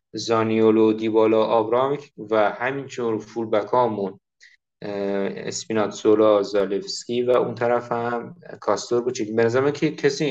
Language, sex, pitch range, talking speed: Persian, male, 110-130 Hz, 105 wpm